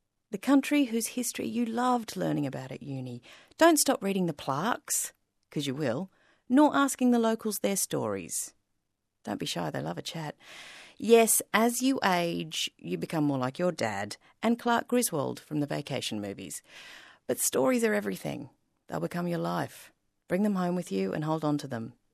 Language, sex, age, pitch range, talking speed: English, female, 40-59, 150-235 Hz, 180 wpm